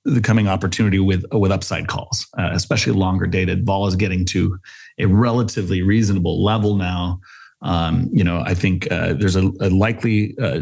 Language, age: English, 30-49